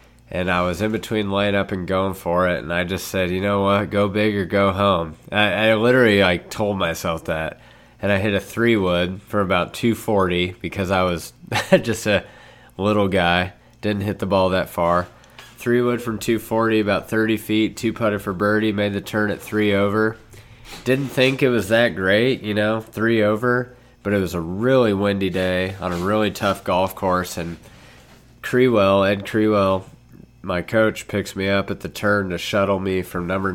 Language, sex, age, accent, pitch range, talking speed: English, male, 20-39, American, 90-105 Hz, 190 wpm